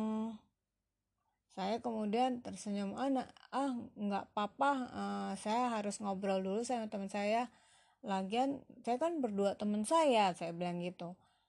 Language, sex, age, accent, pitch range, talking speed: Indonesian, female, 30-49, native, 185-250 Hz, 130 wpm